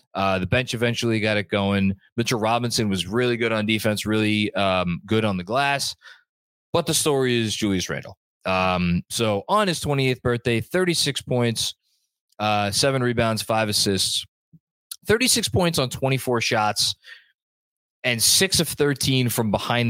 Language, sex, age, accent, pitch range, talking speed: English, male, 20-39, American, 105-140 Hz, 150 wpm